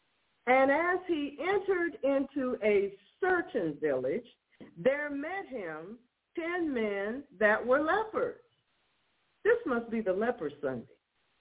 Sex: female